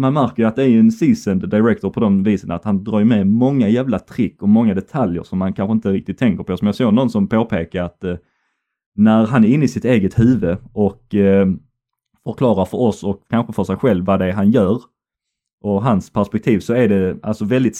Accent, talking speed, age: native, 220 wpm, 30-49